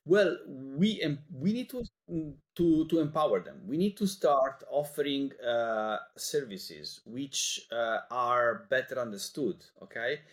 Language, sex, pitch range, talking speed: English, male, 115-180 Hz, 130 wpm